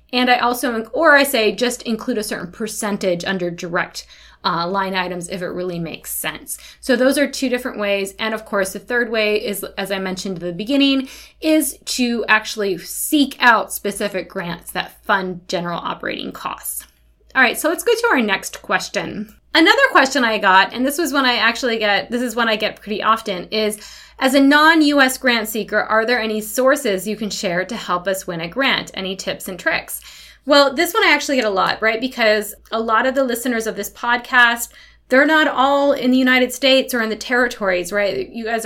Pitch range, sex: 200-265 Hz, female